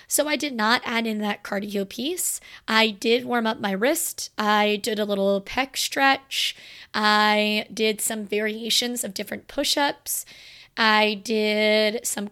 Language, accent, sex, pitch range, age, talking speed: English, American, female, 205-250 Hz, 20-39, 155 wpm